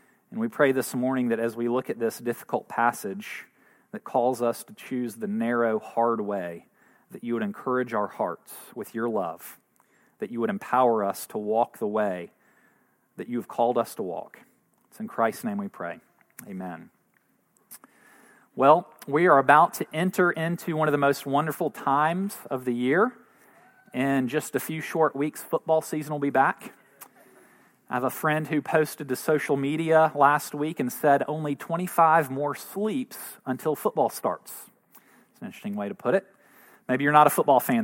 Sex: male